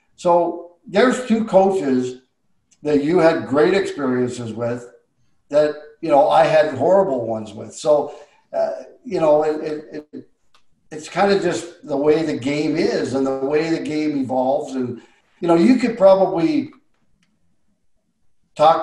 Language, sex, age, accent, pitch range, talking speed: English, male, 50-69, American, 135-170 Hz, 150 wpm